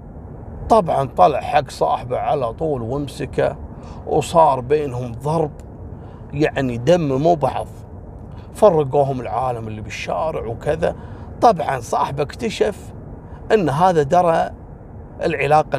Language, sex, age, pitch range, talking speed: Arabic, male, 40-59, 110-150 Hz, 100 wpm